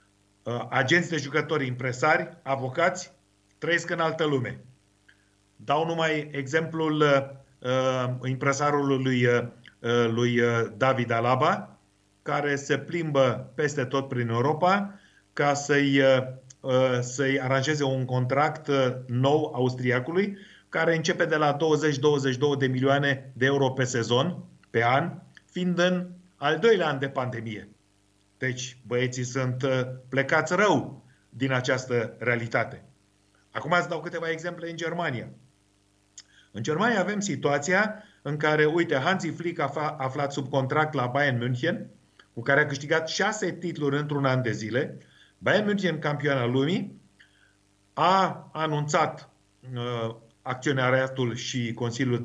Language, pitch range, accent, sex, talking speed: Romanian, 125-155 Hz, native, male, 115 wpm